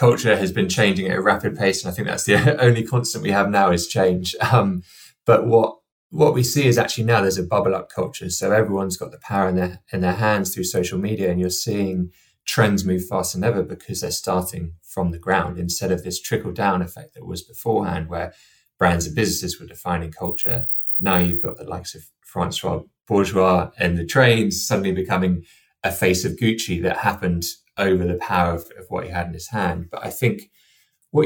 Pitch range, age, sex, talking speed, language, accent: 90-100 Hz, 20-39, male, 215 wpm, English, British